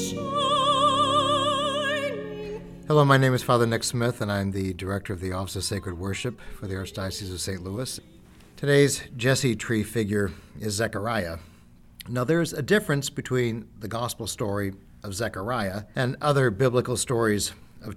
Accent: American